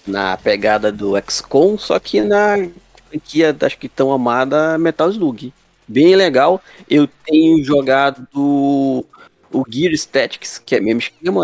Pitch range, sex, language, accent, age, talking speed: 120-165 Hz, male, Portuguese, Brazilian, 20-39, 145 wpm